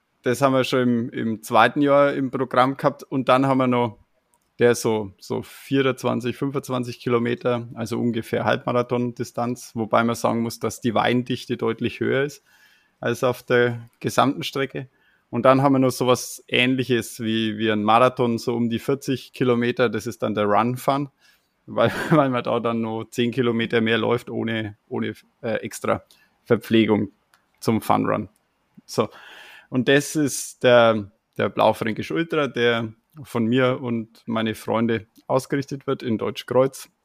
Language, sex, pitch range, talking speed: German, male, 115-130 Hz, 155 wpm